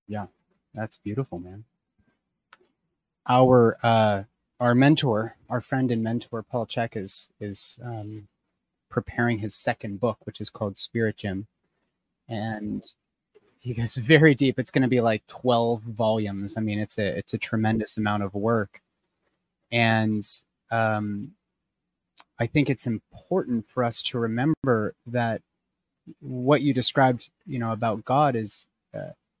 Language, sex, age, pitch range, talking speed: English, male, 30-49, 110-130 Hz, 140 wpm